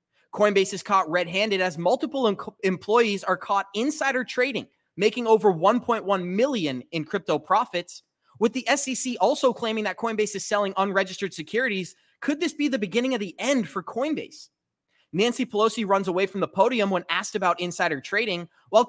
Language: English